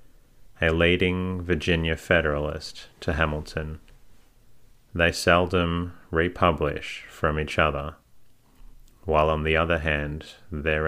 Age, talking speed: 30-49, 100 wpm